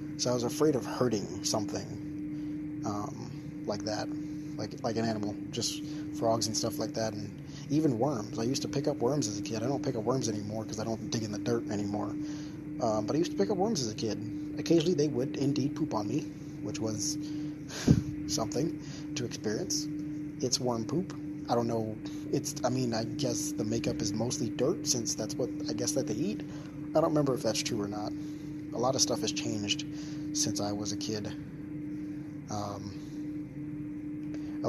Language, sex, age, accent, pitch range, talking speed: English, male, 20-39, American, 110-150 Hz, 195 wpm